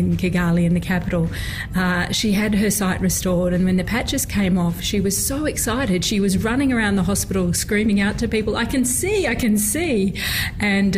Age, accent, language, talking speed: 40-59, Australian, English, 200 wpm